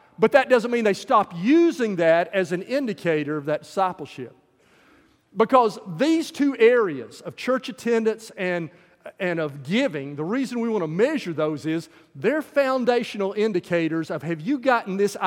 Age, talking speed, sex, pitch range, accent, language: 40-59, 160 wpm, male, 170-235 Hz, American, English